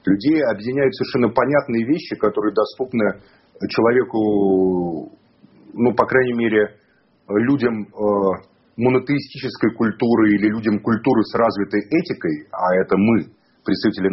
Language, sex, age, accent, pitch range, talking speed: Russian, male, 40-59, native, 105-145 Hz, 105 wpm